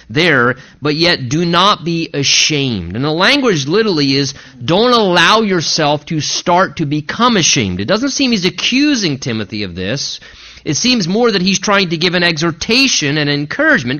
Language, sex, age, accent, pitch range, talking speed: English, male, 30-49, American, 140-195 Hz, 170 wpm